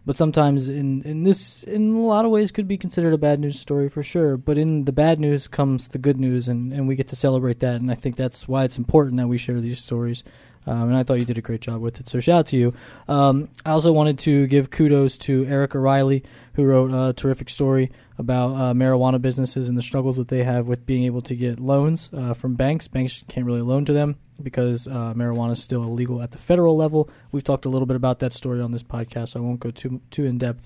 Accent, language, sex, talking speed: American, English, male, 255 wpm